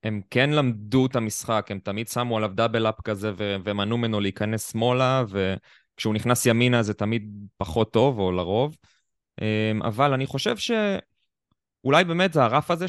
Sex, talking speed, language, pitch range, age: male, 150 wpm, Hebrew, 110-175 Hz, 20-39